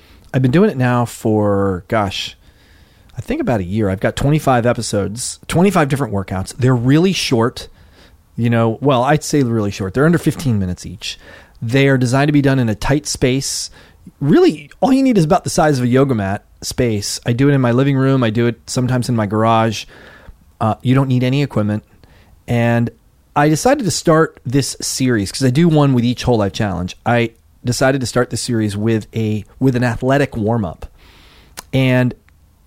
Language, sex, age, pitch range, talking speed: English, male, 30-49, 100-135 Hz, 195 wpm